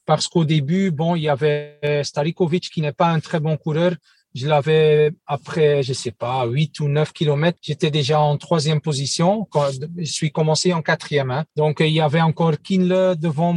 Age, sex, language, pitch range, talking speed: 40-59, male, French, 145-175 Hz, 195 wpm